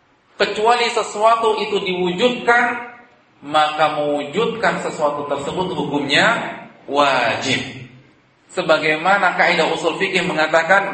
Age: 40-59